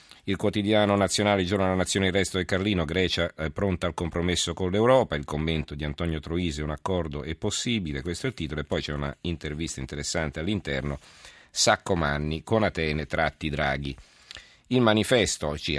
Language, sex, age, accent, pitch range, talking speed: Italian, male, 50-69, native, 75-90 Hz, 175 wpm